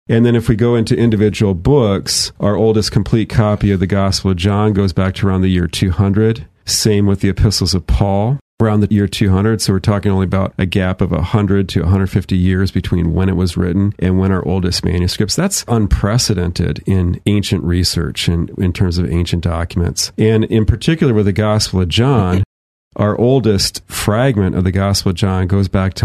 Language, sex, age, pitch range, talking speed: English, male, 40-59, 90-105 Hz, 200 wpm